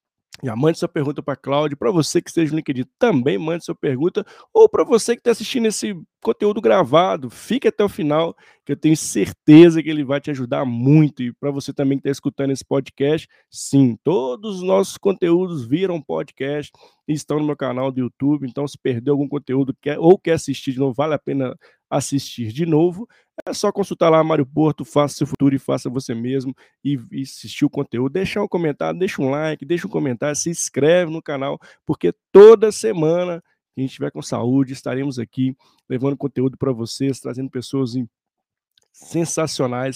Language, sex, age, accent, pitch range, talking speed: Portuguese, male, 20-39, Brazilian, 130-160 Hz, 195 wpm